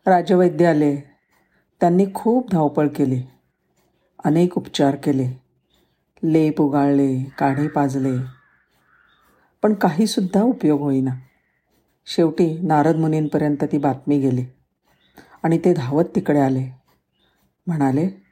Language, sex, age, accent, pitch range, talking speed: Marathi, female, 50-69, native, 140-195 Hz, 95 wpm